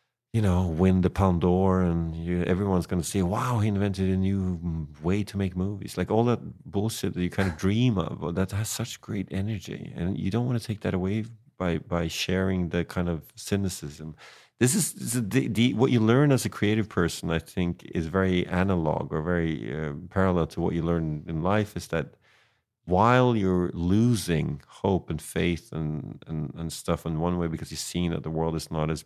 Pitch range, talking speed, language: 80-100 Hz, 215 wpm, English